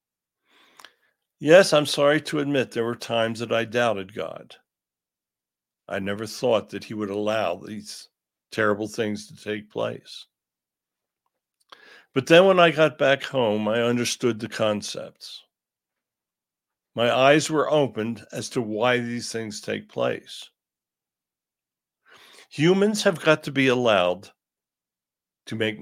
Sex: male